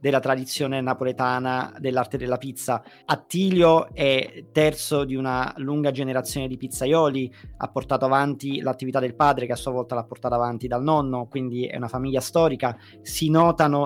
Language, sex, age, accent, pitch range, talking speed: Italian, male, 30-49, native, 130-170 Hz, 160 wpm